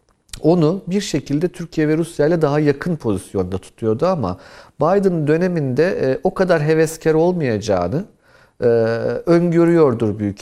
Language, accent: Turkish, native